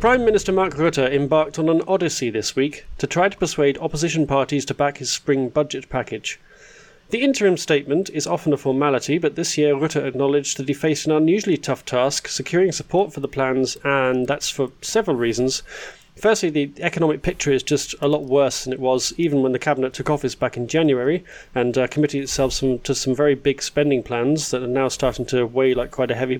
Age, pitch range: 30-49, 130-160 Hz